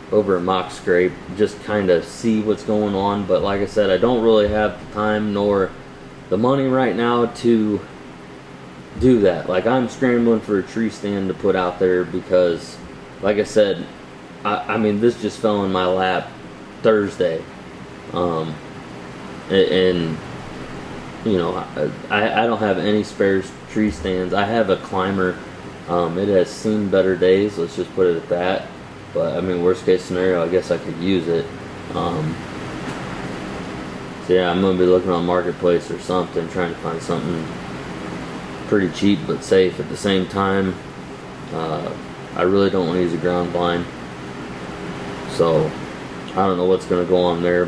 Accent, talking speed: American, 175 wpm